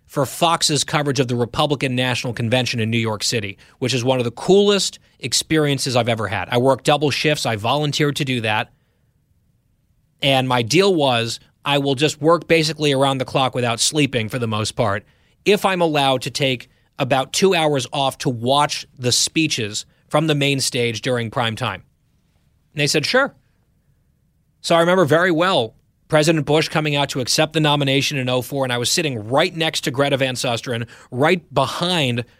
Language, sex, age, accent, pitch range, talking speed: English, male, 30-49, American, 120-155 Hz, 185 wpm